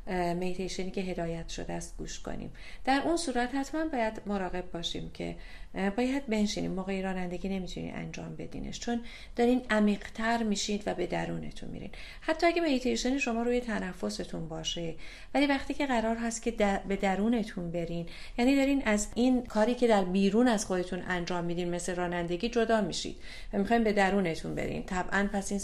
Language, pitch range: Persian, 175-230 Hz